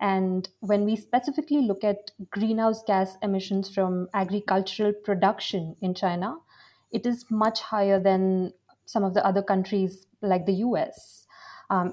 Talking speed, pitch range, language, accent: 140 wpm, 185-215 Hz, English, Indian